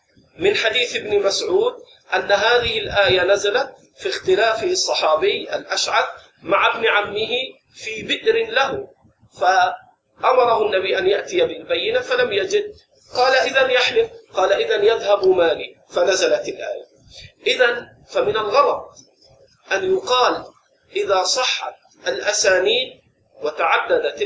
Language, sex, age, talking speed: Arabic, male, 40-59, 105 wpm